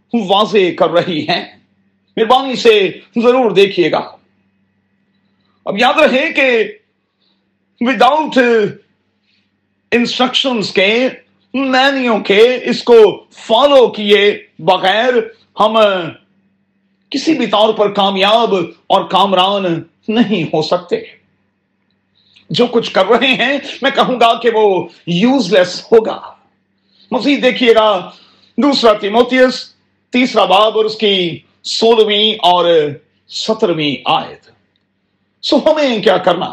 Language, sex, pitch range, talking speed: Urdu, male, 180-255 Hz, 105 wpm